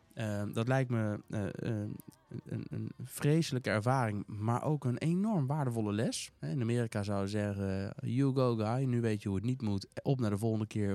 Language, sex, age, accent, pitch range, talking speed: Dutch, male, 20-39, Dutch, 95-125 Hz, 195 wpm